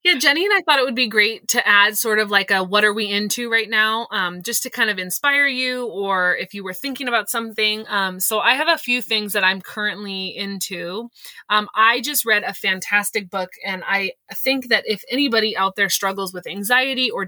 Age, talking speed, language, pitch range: 20-39, 225 wpm, English, 195-235 Hz